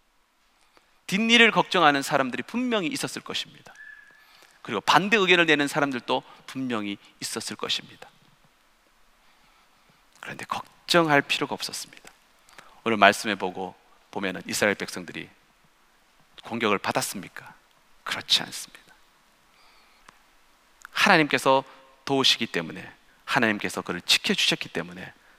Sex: male